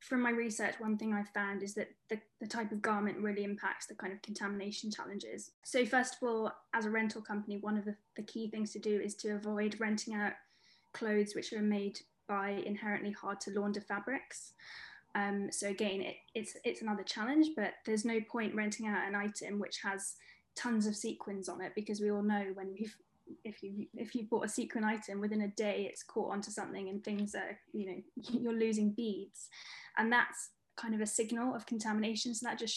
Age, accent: 10-29, British